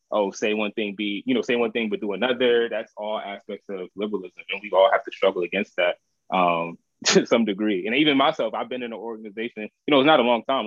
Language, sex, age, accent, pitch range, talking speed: English, male, 20-39, American, 95-120 Hz, 255 wpm